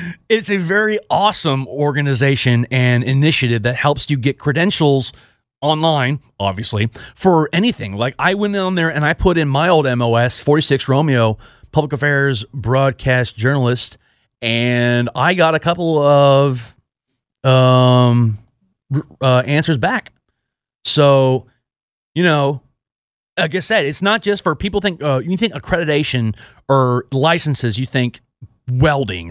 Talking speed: 135 wpm